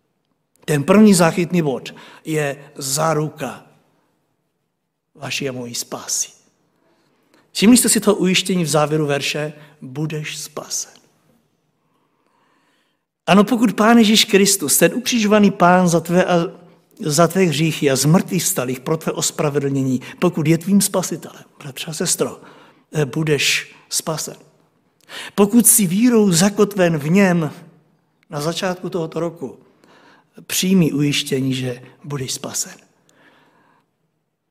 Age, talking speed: 60-79, 110 wpm